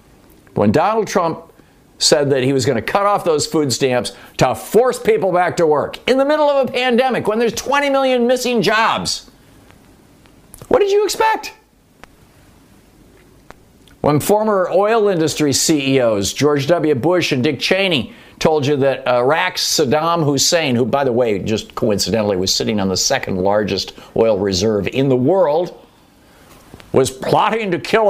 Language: English